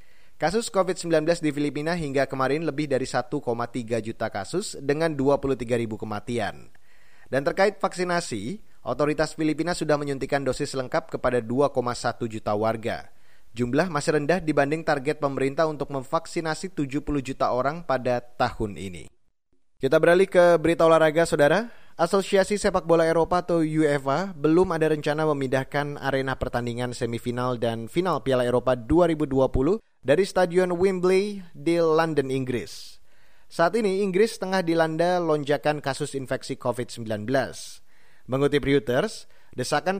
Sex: male